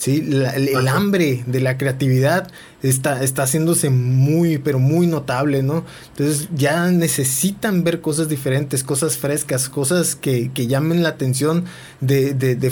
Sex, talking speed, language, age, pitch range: male, 155 wpm, Spanish, 20-39, 135-170 Hz